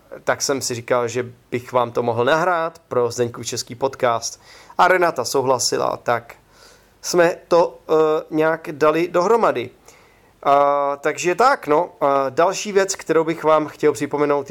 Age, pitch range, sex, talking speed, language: 30-49, 145-190 Hz, male, 150 wpm, Czech